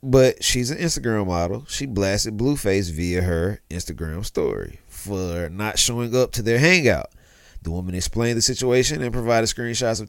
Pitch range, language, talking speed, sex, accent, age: 90-130 Hz, English, 165 wpm, male, American, 30-49